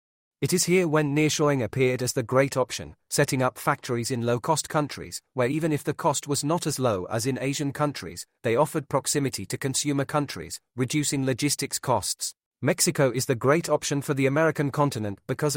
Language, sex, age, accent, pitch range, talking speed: English, male, 40-59, British, 125-150 Hz, 185 wpm